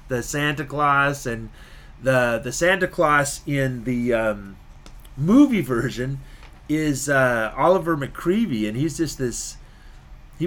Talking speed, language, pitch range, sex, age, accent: 125 wpm, English, 115-145 Hz, male, 30-49, American